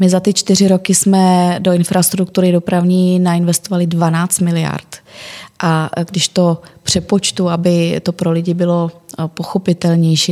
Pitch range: 160-180 Hz